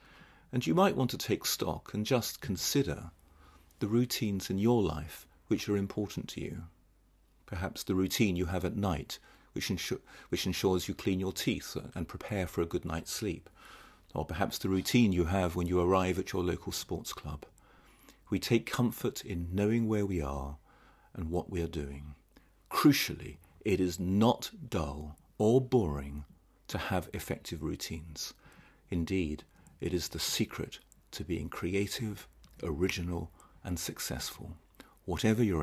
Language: English